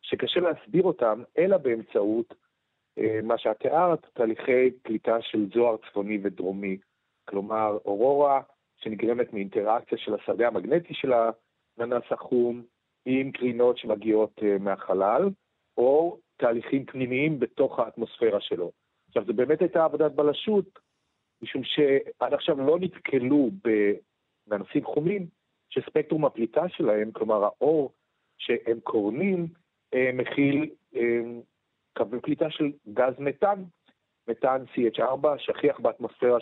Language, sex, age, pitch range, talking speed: Hebrew, male, 40-59, 110-155 Hz, 105 wpm